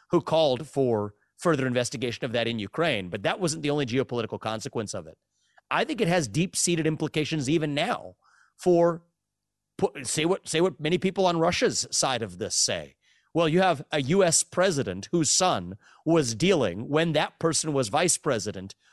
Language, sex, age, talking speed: English, male, 30-49, 170 wpm